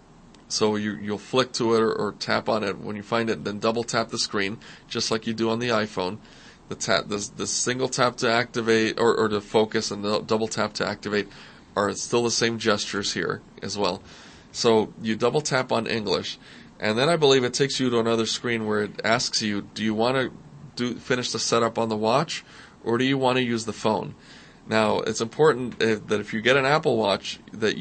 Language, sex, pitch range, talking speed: English, male, 110-120 Hz, 225 wpm